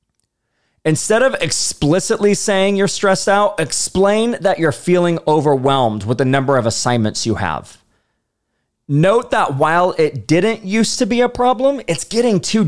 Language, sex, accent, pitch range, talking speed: English, male, American, 115-180 Hz, 150 wpm